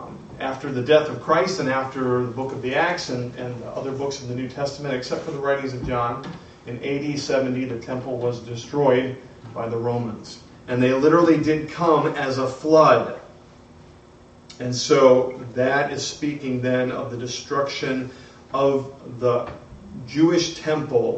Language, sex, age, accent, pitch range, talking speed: English, male, 40-59, American, 125-145 Hz, 160 wpm